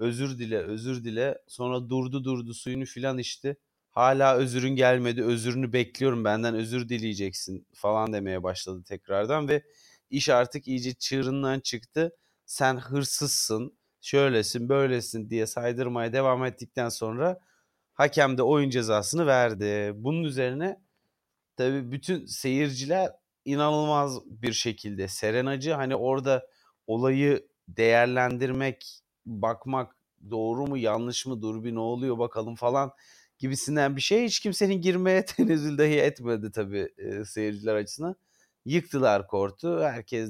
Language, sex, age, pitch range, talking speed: Turkish, male, 30-49, 115-140 Hz, 120 wpm